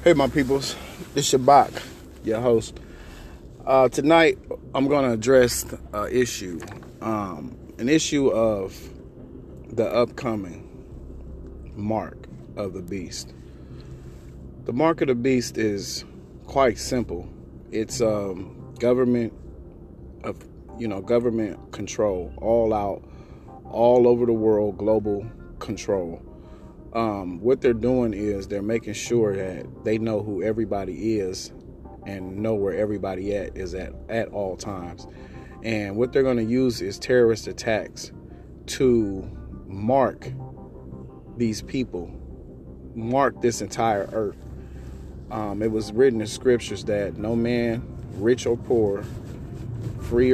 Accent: American